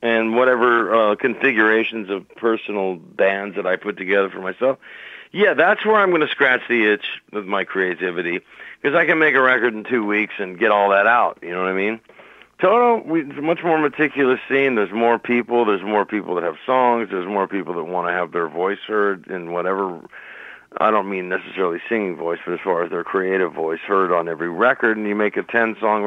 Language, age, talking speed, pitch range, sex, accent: English, 50-69, 215 wpm, 95-120 Hz, male, American